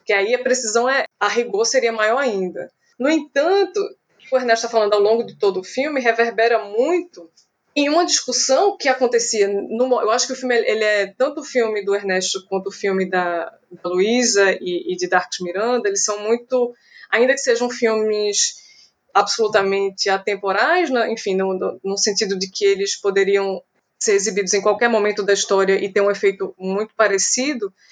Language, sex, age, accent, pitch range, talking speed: Portuguese, female, 20-39, Brazilian, 195-255 Hz, 185 wpm